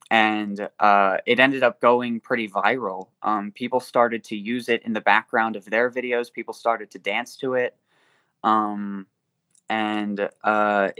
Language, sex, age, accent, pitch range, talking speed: English, male, 20-39, American, 105-125 Hz, 160 wpm